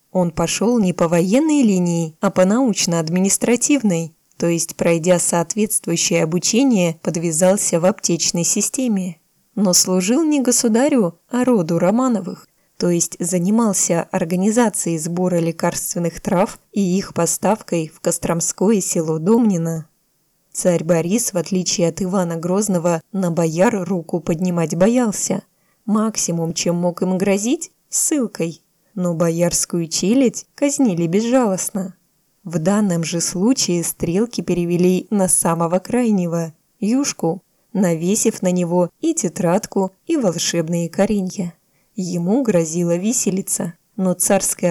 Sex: female